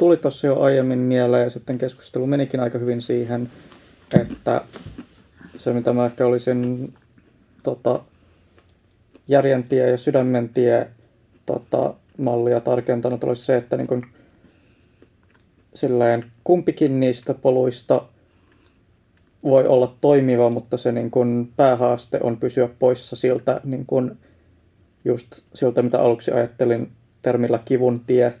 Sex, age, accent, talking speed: male, 30-49, native, 120 wpm